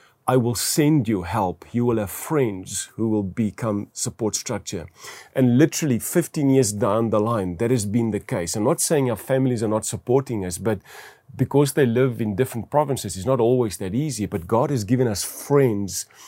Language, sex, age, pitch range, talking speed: English, male, 40-59, 105-135 Hz, 195 wpm